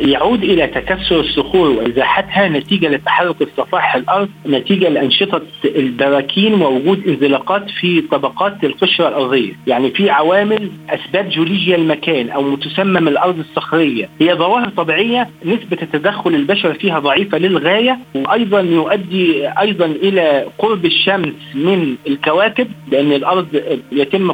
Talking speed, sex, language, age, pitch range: 120 wpm, male, Arabic, 50-69, 160-200 Hz